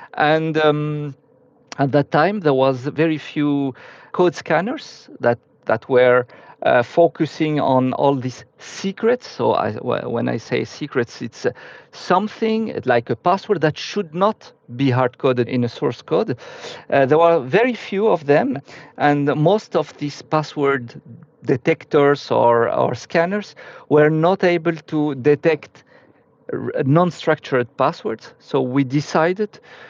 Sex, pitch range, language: male, 130-165 Hz, English